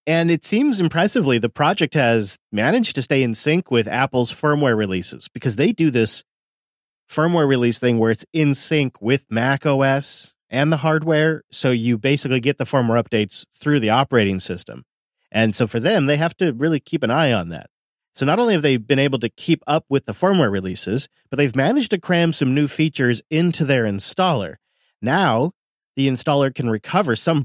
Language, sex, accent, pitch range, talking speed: English, male, American, 115-160 Hz, 190 wpm